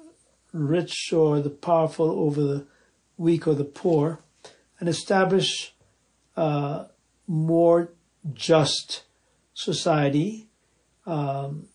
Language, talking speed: English, 90 wpm